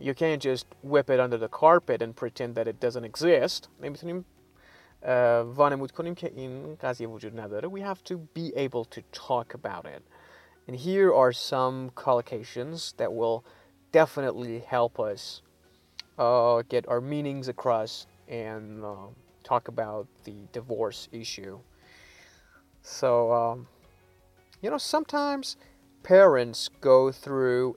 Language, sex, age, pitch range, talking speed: English, male, 30-49, 110-140 Hz, 115 wpm